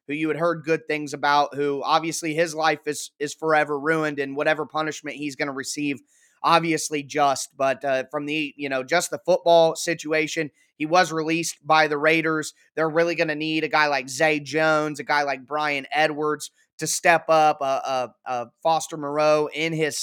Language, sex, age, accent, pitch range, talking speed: English, male, 20-39, American, 150-175 Hz, 195 wpm